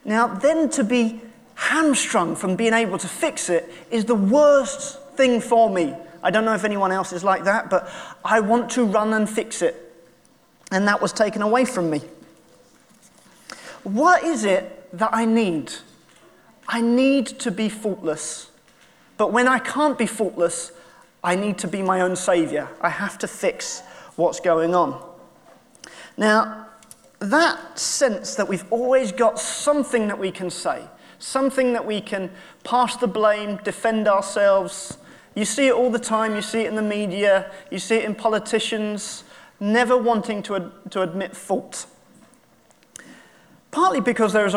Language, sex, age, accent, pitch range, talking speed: English, male, 30-49, British, 185-235 Hz, 165 wpm